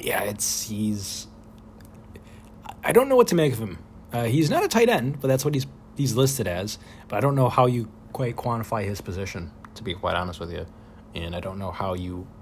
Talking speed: 225 wpm